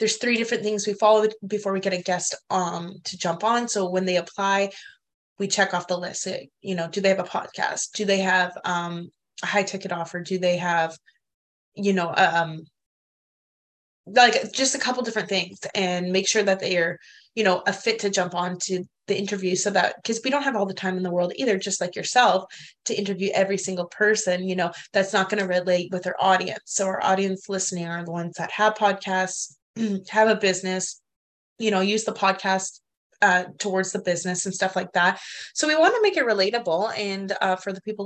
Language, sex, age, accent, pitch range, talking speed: English, female, 20-39, American, 180-200 Hz, 215 wpm